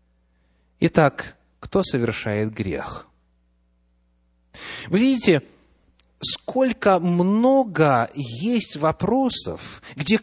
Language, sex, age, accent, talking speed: Russian, male, 30-49, native, 65 wpm